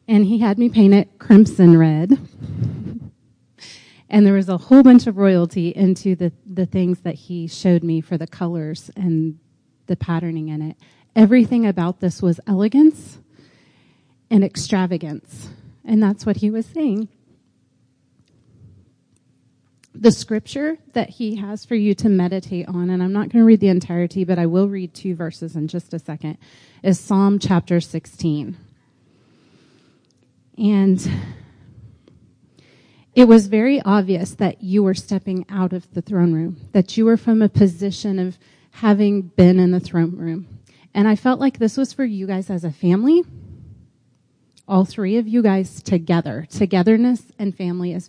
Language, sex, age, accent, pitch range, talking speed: English, female, 30-49, American, 165-210 Hz, 160 wpm